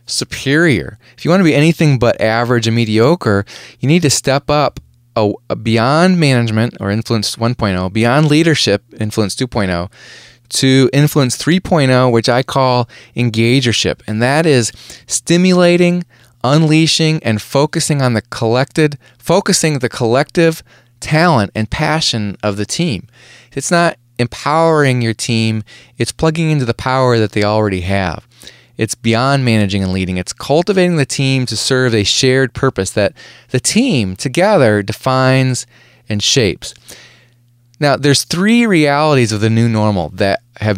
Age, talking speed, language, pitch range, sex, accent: 20-39, 145 wpm, English, 110-150 Hz, male, American